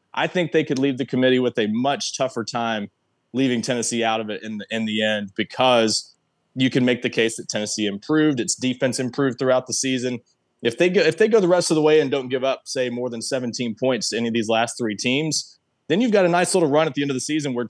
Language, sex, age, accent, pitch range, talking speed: English, male, 20-39, American, 120-145 Hz, 265 wpm